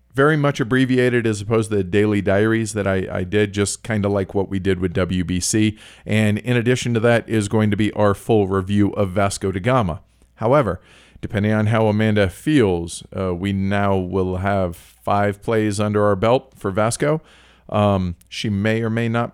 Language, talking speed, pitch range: English, 190 wpm, 95-120 Hz